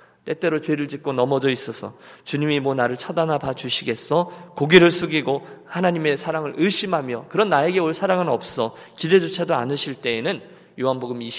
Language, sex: Korean, male